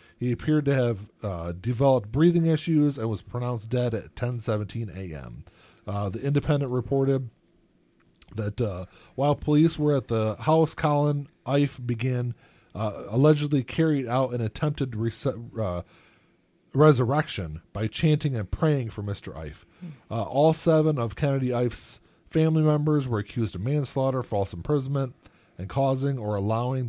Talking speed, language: 140 wpm, English